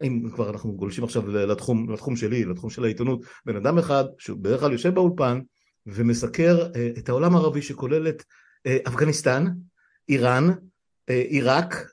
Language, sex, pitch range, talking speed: Hebrew, male, 115-170 Hz, 135 wpm